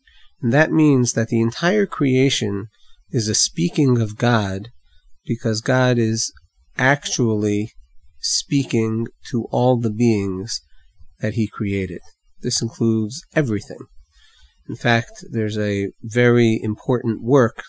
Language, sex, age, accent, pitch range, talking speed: English, male, 40-59, American, 105-125 Hz, 115 wpm